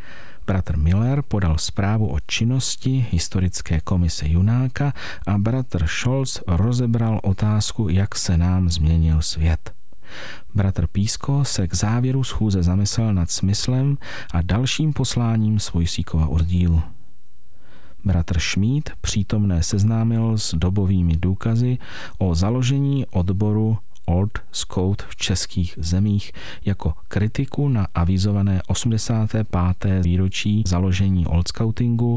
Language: Czech